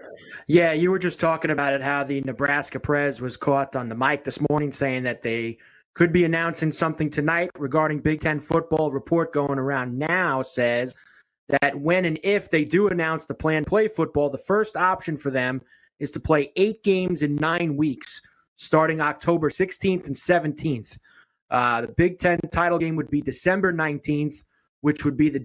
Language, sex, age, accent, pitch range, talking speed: English, male, 30-49, American, 140-175 Hz, 185 wpm